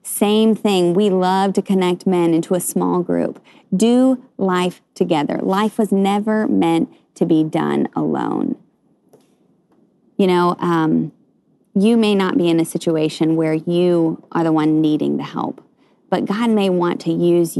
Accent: American